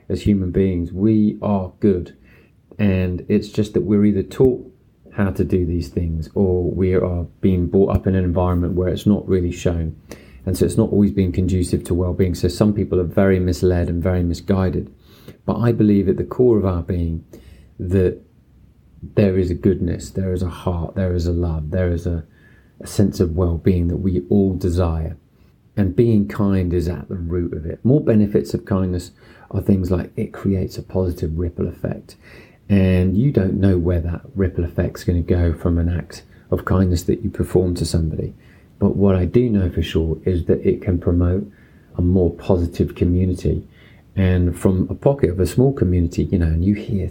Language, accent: English, British